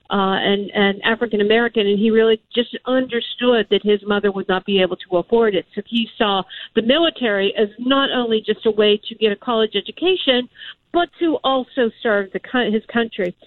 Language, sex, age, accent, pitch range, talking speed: English, female, 50-69, American, 205-265 Hz, 185 wpm